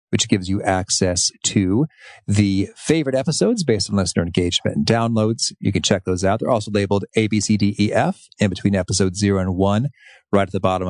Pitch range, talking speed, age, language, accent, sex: 100-135 Hz, 210 wpm, 40-59, English, American, male